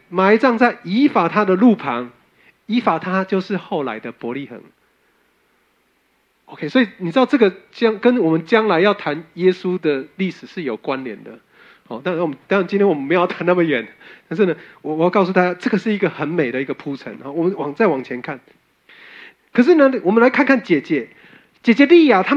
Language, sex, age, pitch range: Chinese, male, 30-49, 165-250 Hz